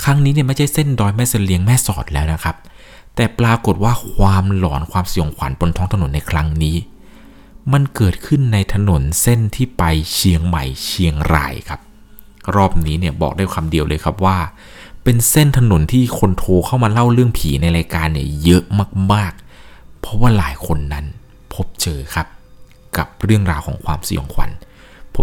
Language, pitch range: Thai, 80-105 Hz